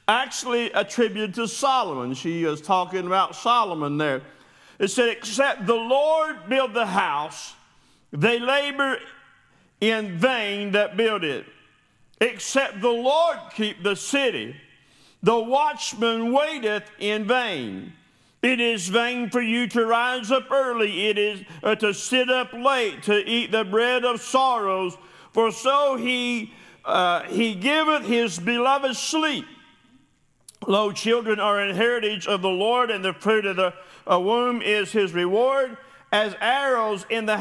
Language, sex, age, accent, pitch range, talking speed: English, male, 50-69, American, 190-240 Hz, 140 wpm